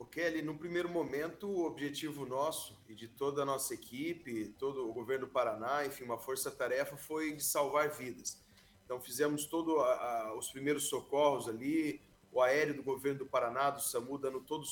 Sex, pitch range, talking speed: male, 135-165 Hz, 180 wpm